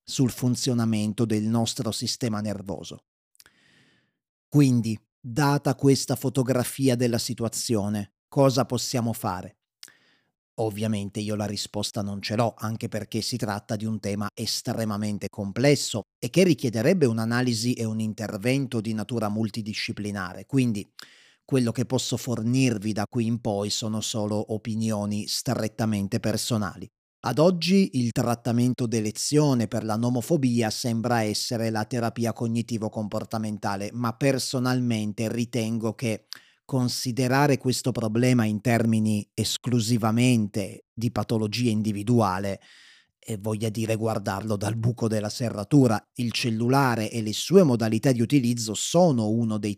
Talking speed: 120 wpm